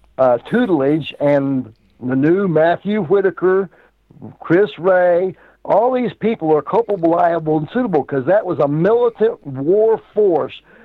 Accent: American